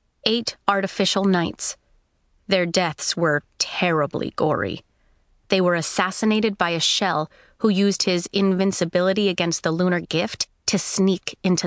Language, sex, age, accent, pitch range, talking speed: English, female, 30-49, American, 165-205 Hz, 130 wpm